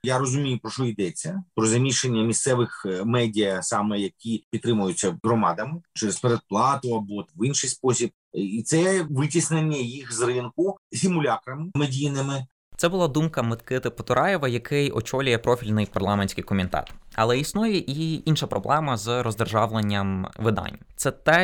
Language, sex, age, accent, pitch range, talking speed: Ukrainian, male, 20-39, native, 110-145 Hz, 130 wpm